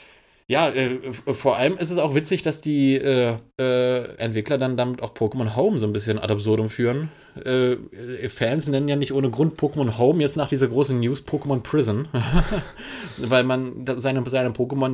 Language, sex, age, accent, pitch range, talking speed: German, male, 30-49, German, 110-135 Hz, 175 wpm